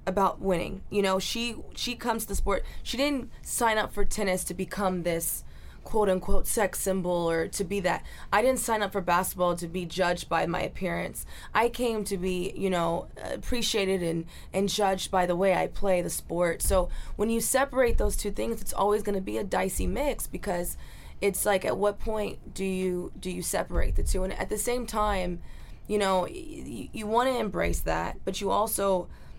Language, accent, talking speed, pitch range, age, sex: English, American, 205 wpm, 175-205 Hz, 20-39, female